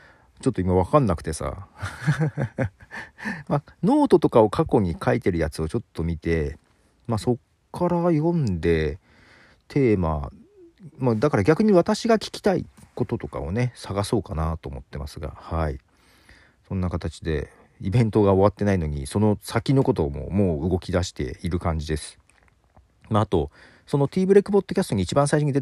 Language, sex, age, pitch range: Japanese, male, 40-59, 85-130 Hz